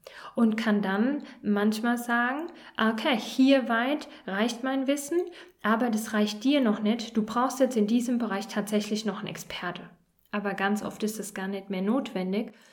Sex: female